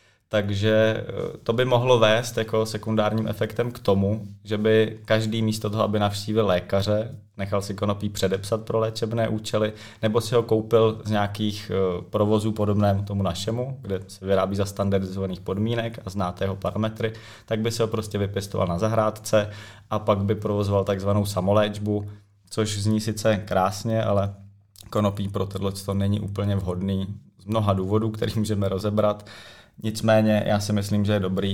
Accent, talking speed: native, 160 wpm